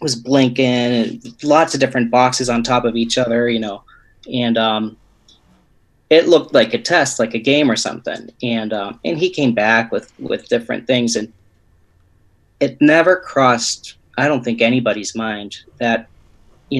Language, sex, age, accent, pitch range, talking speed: English, male, 30-49, American, 115-130 Hz, 170 wpm